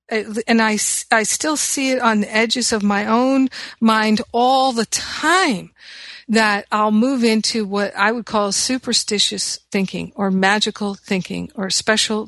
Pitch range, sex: 200-230 Hz, female